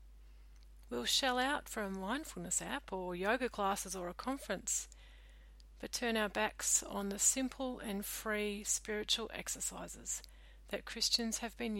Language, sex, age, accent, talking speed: English, female, 40-59, Australian, 140 wpm